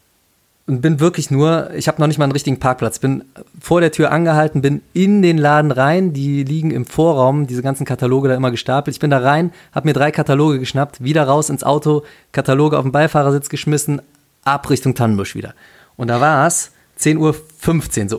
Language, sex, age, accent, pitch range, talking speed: German, male, 30-49, German, 120-150 Hz, 200 wpm